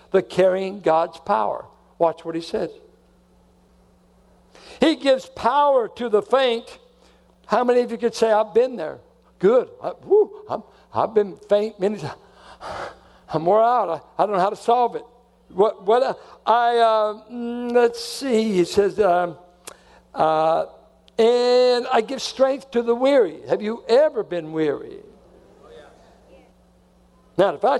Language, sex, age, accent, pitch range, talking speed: English, male, 60-79, American, 180-265 Hz, 145 wpm